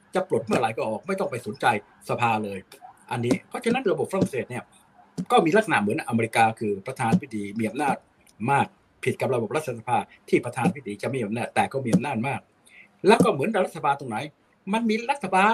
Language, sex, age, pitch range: Thai, male, 60-79, 115-165 Hz